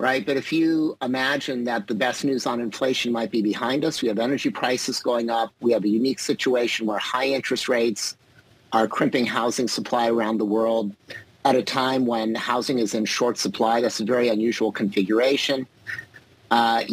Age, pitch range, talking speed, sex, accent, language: 50-69, 110-130 Hz, 185 wpm, male, American, English